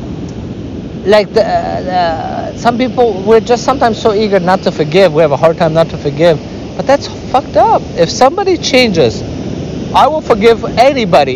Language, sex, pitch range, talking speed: English, male, 115-180 Hz, 165 wpm